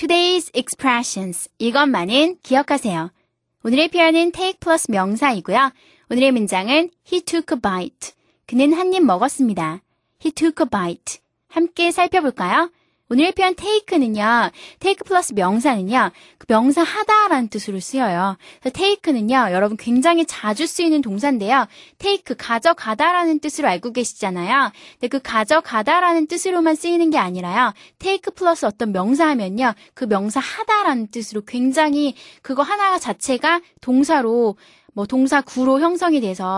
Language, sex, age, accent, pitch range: Korean, female, 20-39, native, 220-330 Hz